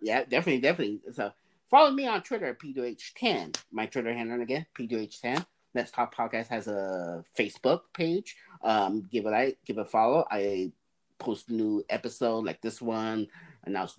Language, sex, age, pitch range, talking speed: English, male, 30-49, 110-140 Hz, 160 wpm